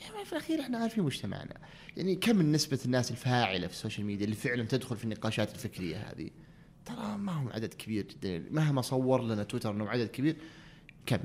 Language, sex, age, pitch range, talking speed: Arabic, male, 30-49, 115-165 Hz, 190 wpm